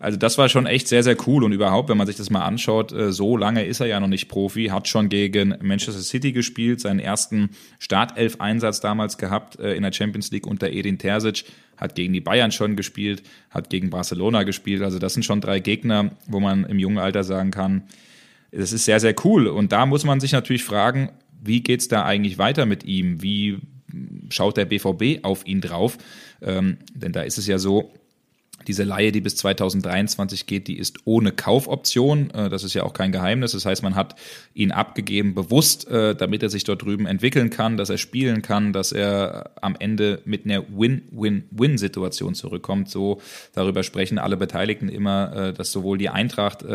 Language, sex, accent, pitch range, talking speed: German, male, German, 95-110 Hz, 195 wpm